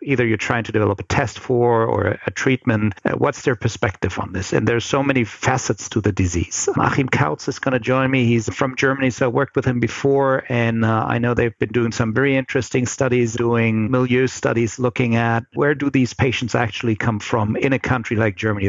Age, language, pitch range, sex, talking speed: 50-69, English, 105-125 Hz, male, 220 wpm